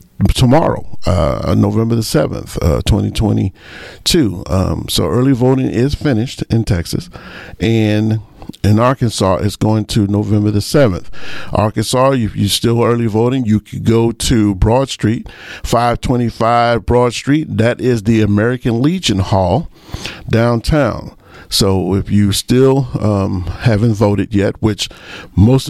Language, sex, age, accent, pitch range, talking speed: English, male, 50-69, American, 105-130 Hz, 130 wpm